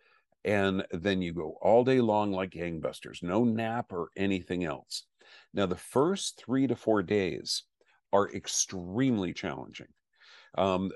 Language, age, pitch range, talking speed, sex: English, 50-69, 95-125 Hz, 135 wpm, male